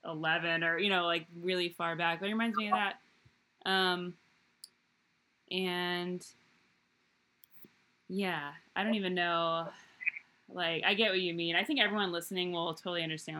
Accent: American